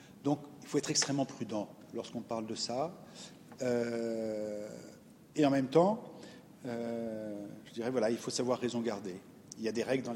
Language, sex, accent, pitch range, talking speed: French, male, French, 115-145 Hz, 175 wpm